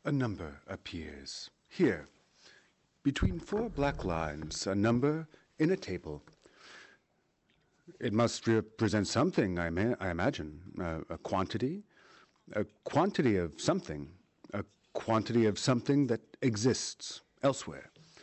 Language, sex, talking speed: French, male, 115 wpm